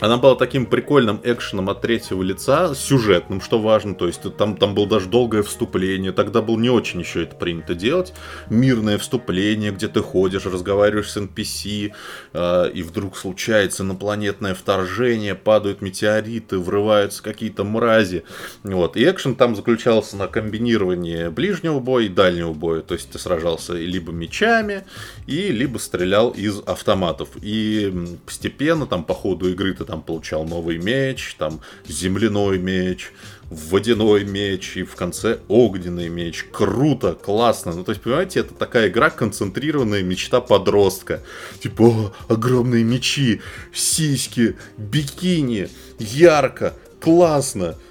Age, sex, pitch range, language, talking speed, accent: 20-39, male, 95-115 Hz, Russian, 130 wpm, native